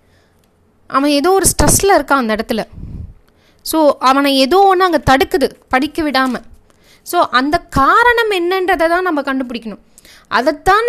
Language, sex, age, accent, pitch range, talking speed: Tamil, female, 20-39, native, 215-305 Hz, 125 wpm